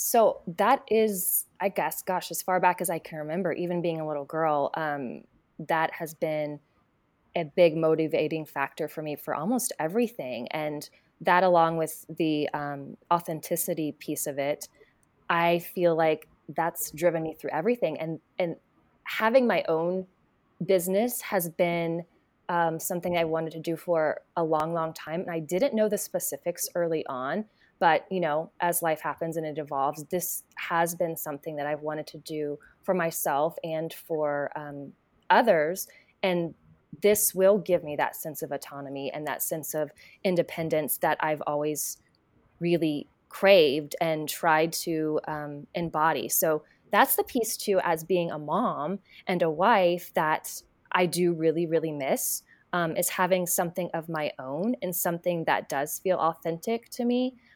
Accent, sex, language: American, female, English